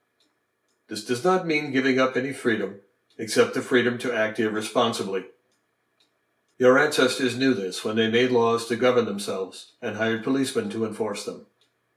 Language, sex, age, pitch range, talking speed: English, male, 60-79, 115-135 Hz, 155 wpm